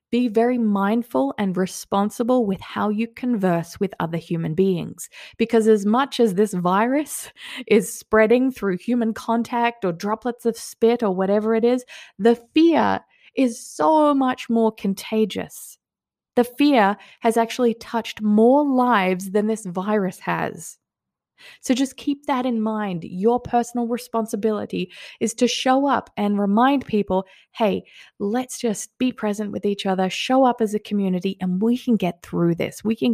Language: English